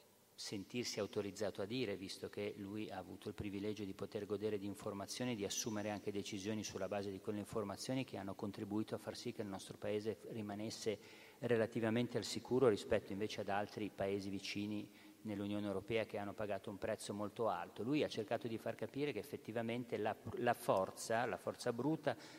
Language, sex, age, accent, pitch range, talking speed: Italian, male, 40-59, native, 105-120 Hz, 180 wpm